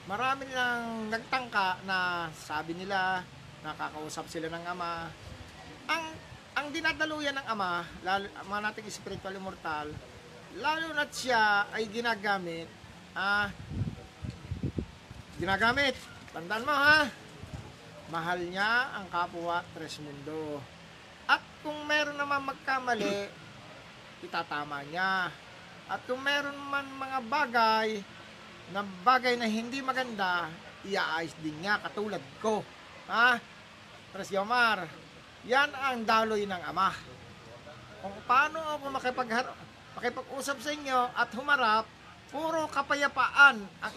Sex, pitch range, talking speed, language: male, 175-265 Hz, 105 wpm, English